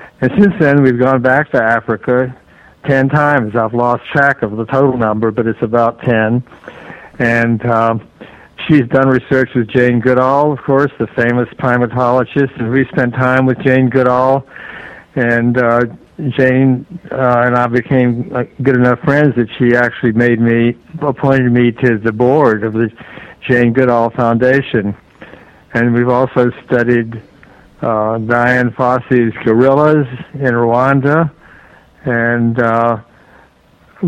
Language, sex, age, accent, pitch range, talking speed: English, male, 60-79, American, 115-130 Hz, 140 wpm